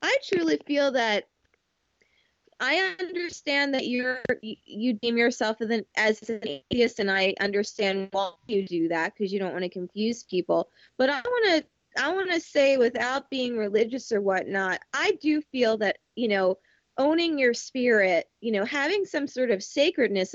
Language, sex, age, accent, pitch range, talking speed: English, female, 20-39, American, 220-305 Hz, 170 wpm